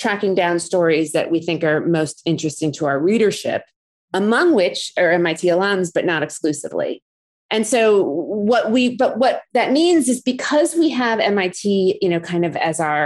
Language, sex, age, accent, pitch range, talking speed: English, female, 30-49, American, 165-220 Hz, 180 wpm